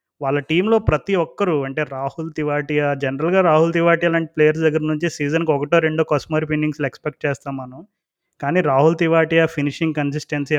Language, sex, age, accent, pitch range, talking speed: Telugu, male, 20-39, native, 140-160 Hz, 155 wpm